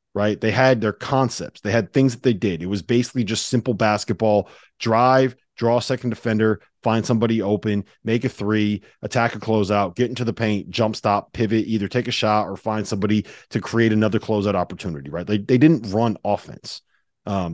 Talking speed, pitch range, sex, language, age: 195 wpm, 100-130 Hz, male, English, 30-49